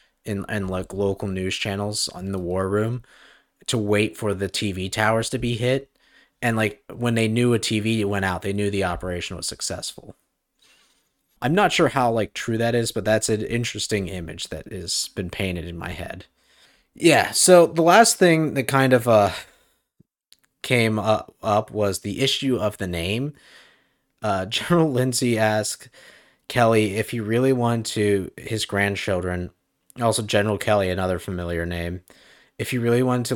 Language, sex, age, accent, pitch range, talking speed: English, male, 30-49, American, 95-120 Hz, 170 wpm